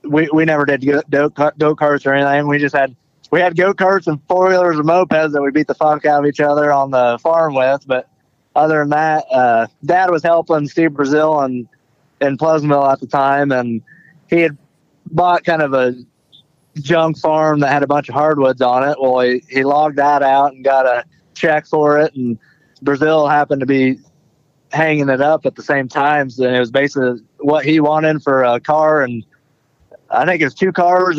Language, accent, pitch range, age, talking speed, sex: English, American, 130-155 Hz, 20-39, 205 wpm, male